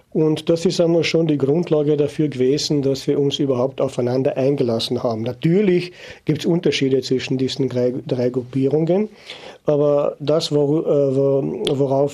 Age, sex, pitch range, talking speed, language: 50-69, male, 135-165 Hz, 135 wpm, German